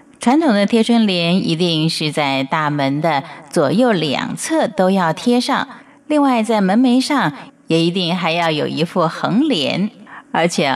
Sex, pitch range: female, 165-250 Hz